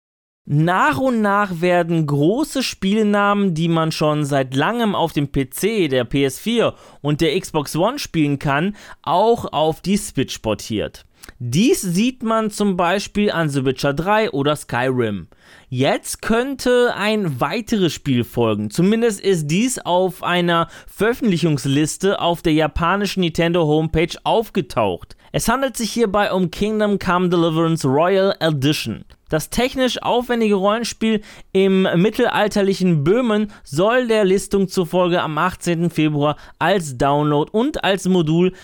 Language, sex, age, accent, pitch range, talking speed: German, male, 20-39, German, 150-210 Hz, 130 wpm